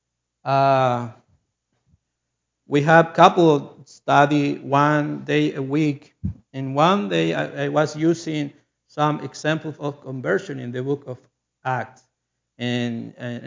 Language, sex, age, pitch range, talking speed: English, male, 60-79, 130-155 Hz, 120 wpm